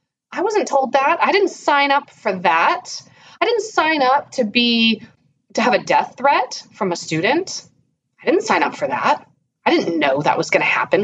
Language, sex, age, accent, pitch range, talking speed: English, female, 30-49, American, 185-300 Hz, 205 wpm